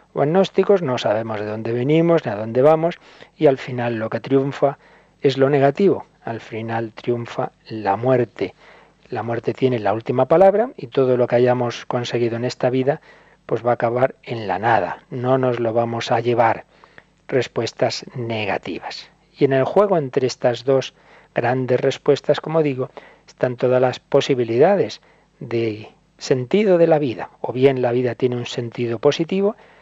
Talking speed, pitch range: 165 wpm, 120-160 Hz